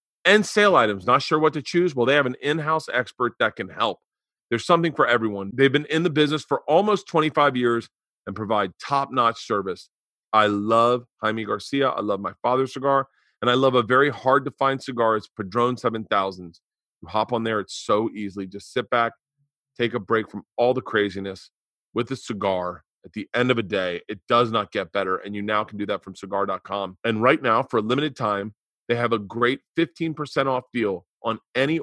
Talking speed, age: 205 wpm, 40-59